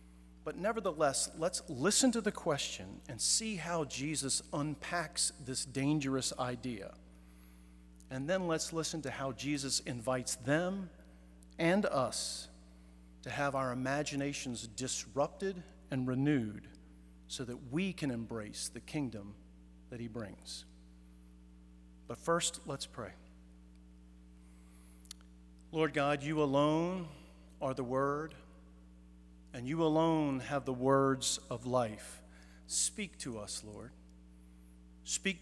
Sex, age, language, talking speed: male, 40-59, English, 115 wpm